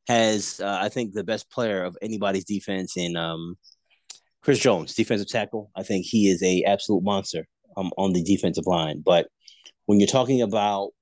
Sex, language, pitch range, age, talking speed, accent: male, English, 95-120 Hz, 30-49, 180 wpm, American